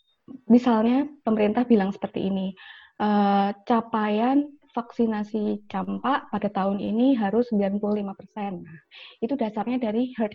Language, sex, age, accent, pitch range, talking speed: Indonesian, female, 20-39, native, 200-240 Hz, 110 wpm